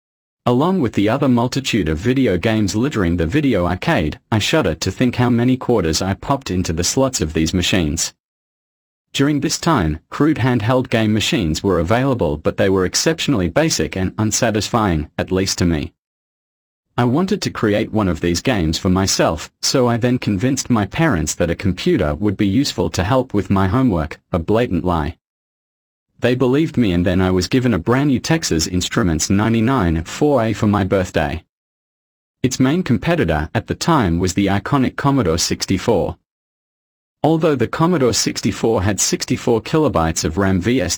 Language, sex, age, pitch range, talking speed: English, male, 40-59, 85-125 Hz, 170 wpm